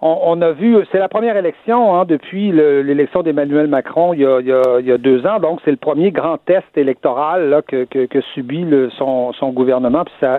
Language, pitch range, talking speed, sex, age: French, 135-180 Hz, 225 wpm, male, 60-79